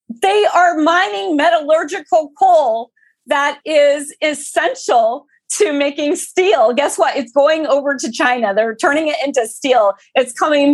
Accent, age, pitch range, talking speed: American, 40-59, 230-330 Hz, 140 wpm